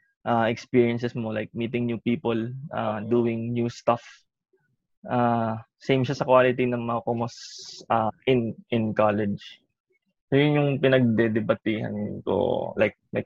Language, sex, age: Filipino, male, 20-39